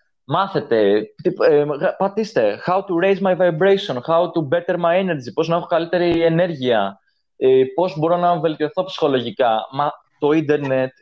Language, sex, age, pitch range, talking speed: Greek, male, 20-39, 125-170 Hz, 130 wpm